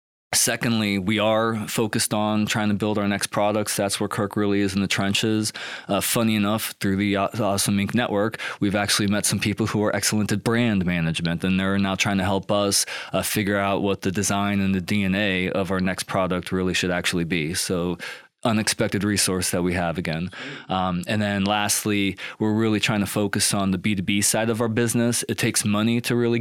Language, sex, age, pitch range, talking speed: English, male, 20-39, 95-110 Hz, 205 wpm